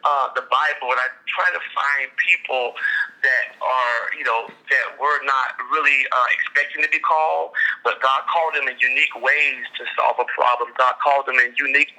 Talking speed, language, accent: 190 wpm, English, American